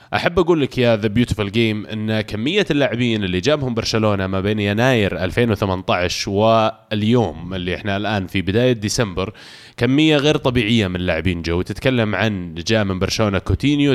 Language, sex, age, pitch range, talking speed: Arabic, male, 20-39, 100-130 Hz, 155 wpm